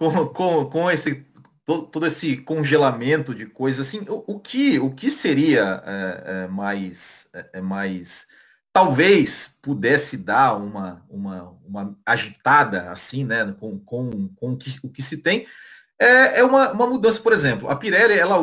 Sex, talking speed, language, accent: male, 160 wpm, Portuguese, Brazilian